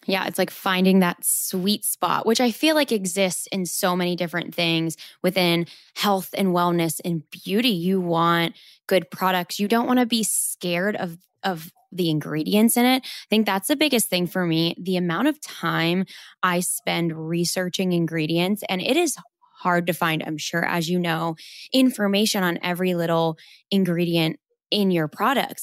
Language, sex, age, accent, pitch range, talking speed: English, female, 10-29, American, 170-205 Hz, 175 wpm